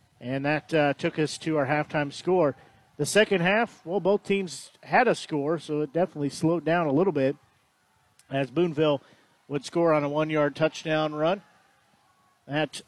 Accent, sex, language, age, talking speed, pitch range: American, male, English, 50-69, 170 wpm, 145-165 Hz